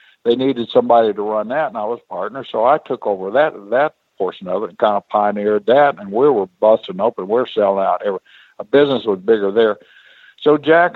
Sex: male